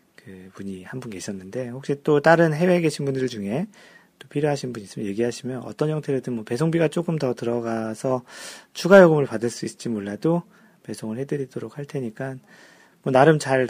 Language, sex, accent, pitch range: Korean, male, native, 110-145 Hz